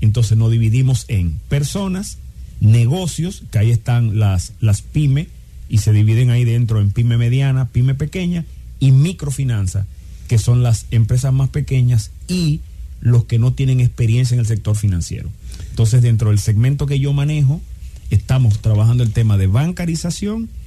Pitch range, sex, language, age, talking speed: 100-130 Hz, male, English, 40-59, 155 wpm